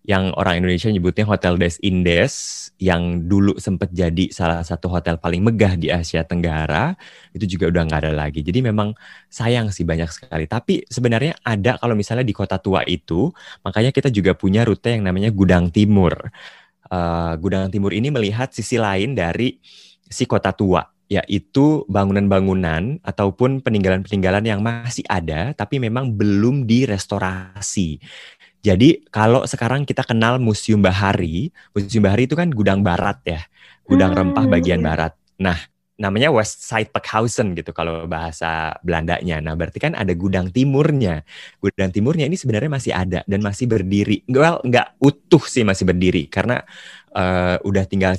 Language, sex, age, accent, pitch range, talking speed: Indonesian, male, 20-39, native, 90-115 Hz, 155 wpm